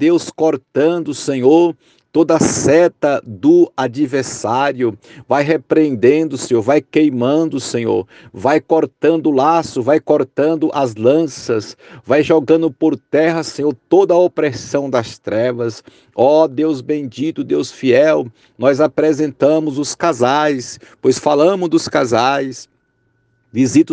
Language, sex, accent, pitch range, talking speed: Portuguese, male, Brazilian, 130-155 Hz, 115 wpm